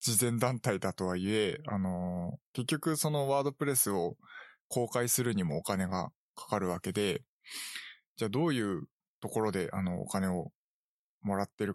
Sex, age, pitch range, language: male, 20-39, 100-140 Hz, Japanese